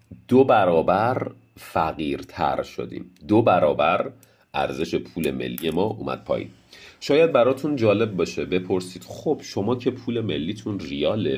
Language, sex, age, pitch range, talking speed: Persian, male, 40-59, 75-115 Hz, 120 wpm